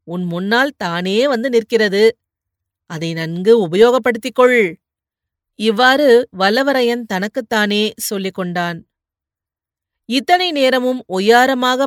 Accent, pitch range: native, 190-250 Hz